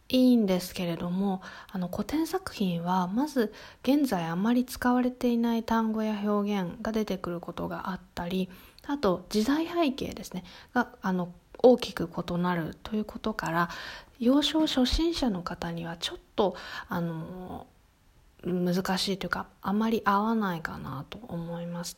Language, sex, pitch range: Japanese, female, 180-245 Hz